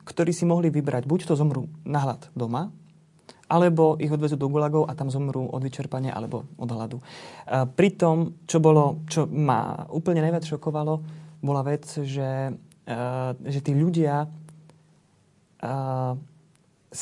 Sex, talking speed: male, 140 wpm